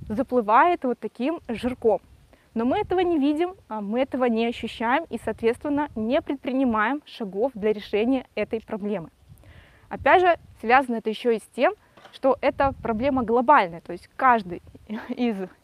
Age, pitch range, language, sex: 20-39, 220-290 Hz, Russian, female